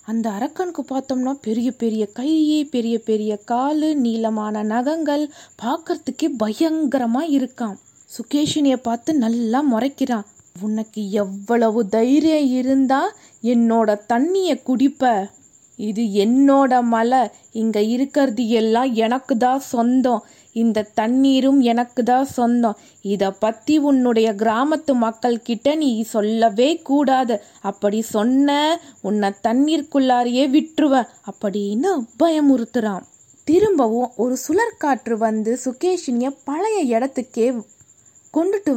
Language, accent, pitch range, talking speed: Tamil, native, 230-285 Hz, 95 wpm